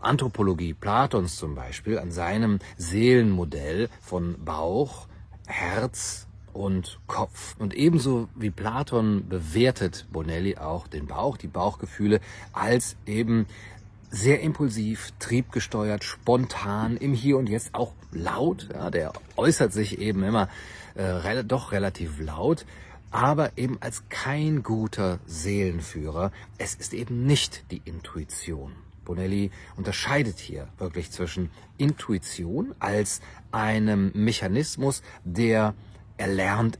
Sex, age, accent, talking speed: male, 40-59, German, 110 wpm